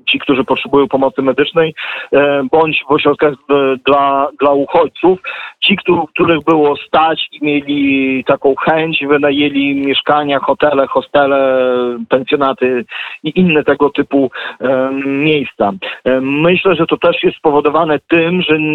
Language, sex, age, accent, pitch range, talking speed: Polish, male, 40-59, native, 135-155 Hz, 125 wpm